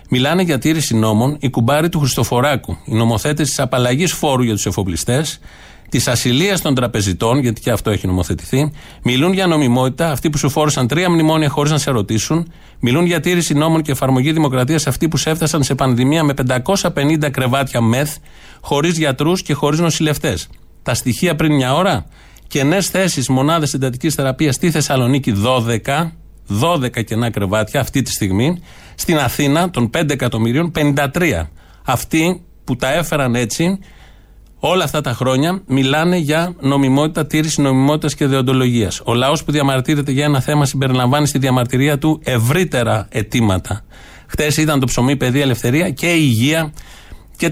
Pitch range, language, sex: 120-155 Hz, Greek, male